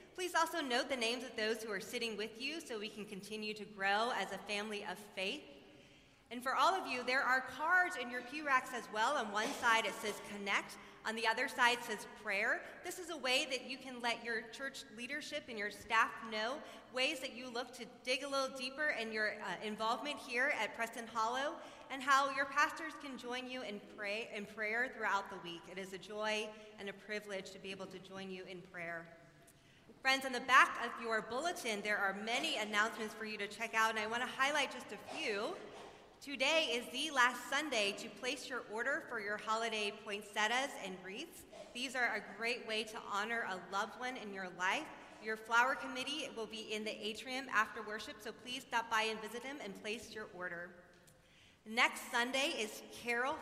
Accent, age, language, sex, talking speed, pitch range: American, 30-49, English, female, 210 wpm, 210-260 Hz